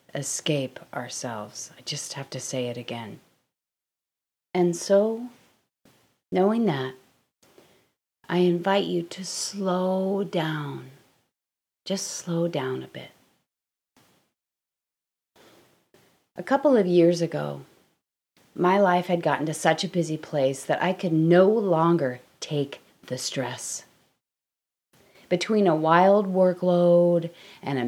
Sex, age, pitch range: female, 30-49, 140-190 Hz